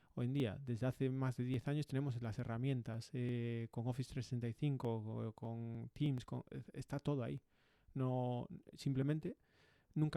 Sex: male